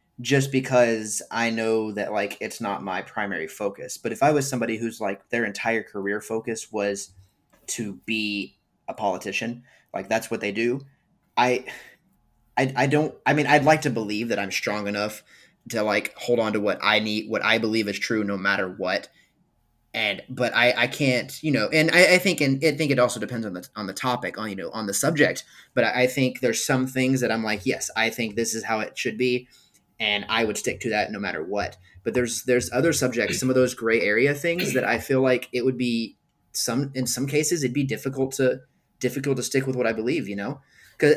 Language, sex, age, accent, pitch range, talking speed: English, male, 20-39, American, 110-135 Hz, 225 wpm